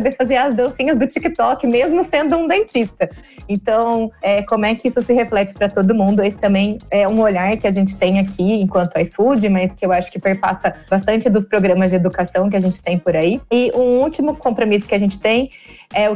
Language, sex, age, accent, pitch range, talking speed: Portuguese, female, 20-39, Brazilian, 185-230 Hz, 220 wpm